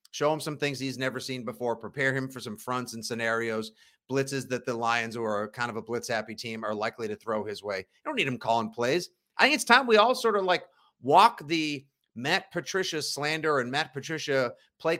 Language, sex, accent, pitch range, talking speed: English, male, American, 120-160 Hz, 230 wpm